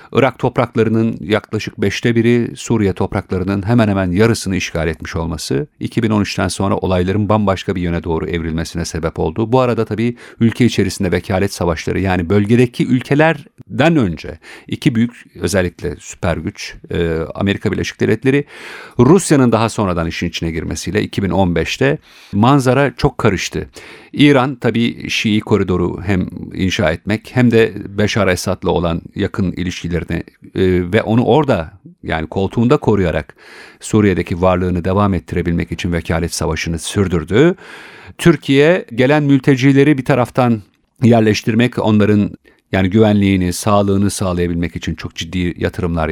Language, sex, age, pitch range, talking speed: Turkish, male, 50-69, 90-115 Hz, 125 wpm